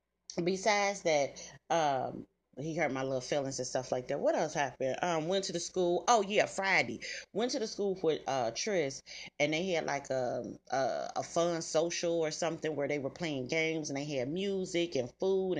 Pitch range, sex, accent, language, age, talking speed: 135-180 Hz, female, American, English, 30-49, 200 wpm